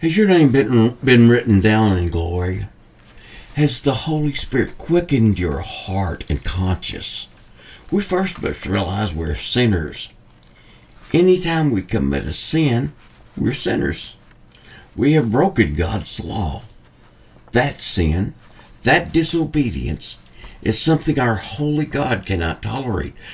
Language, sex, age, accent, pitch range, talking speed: English, male, 60-79, American, 95-135 Hz, 120 wpm